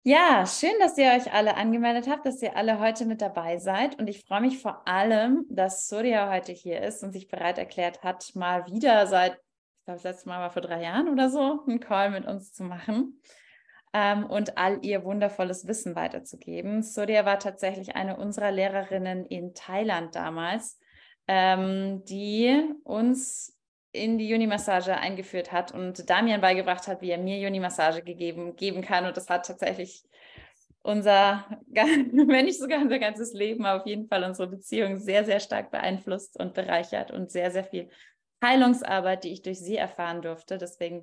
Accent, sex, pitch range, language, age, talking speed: German, female, 185-225 Hz, German, 20-39, 175 wpm